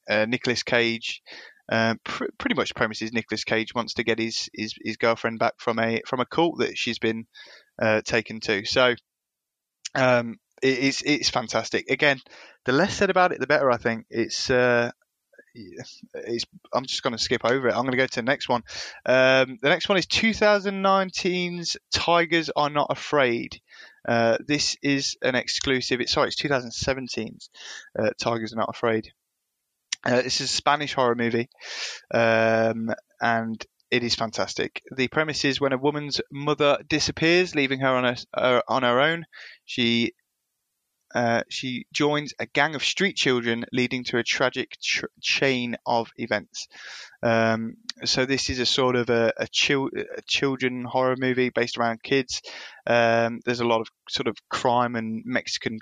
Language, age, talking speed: English, 20-39, 170 wpm